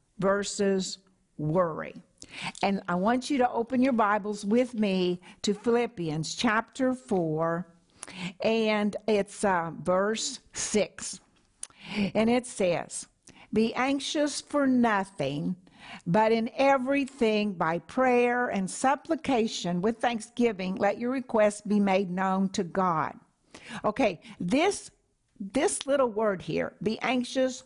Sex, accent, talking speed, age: female, American, 115 wpm, 60-79